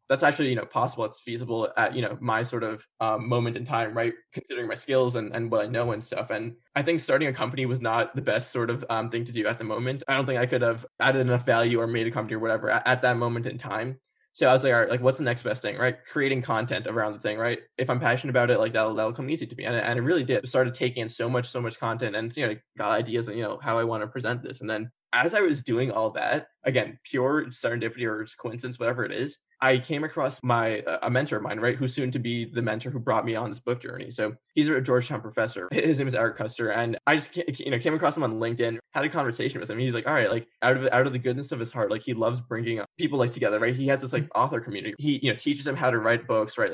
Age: 20-39